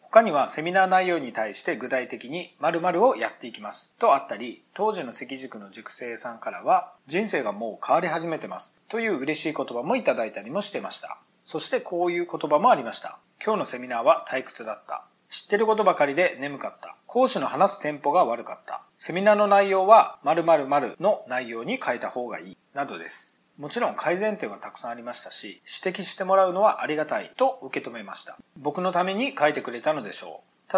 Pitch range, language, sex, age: 150-215 Hz, Japanese, male, 40-59